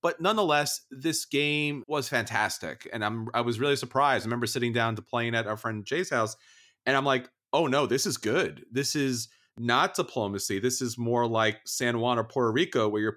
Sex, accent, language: male, American, English